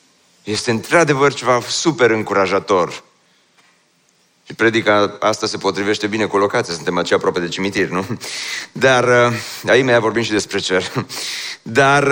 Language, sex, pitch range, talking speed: Romanian, male, 125-180 Hz, 135 wpm